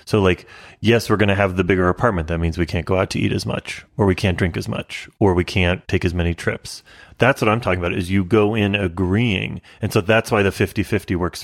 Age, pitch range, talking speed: 30-49, 95-110 Hz, 260 wpm